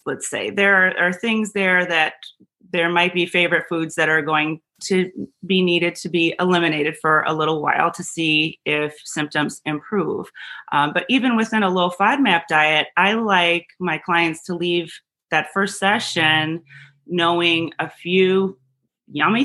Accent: American